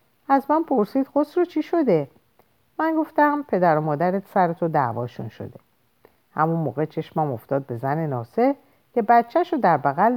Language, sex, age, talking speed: Persian, female, 50-69, 160 wpm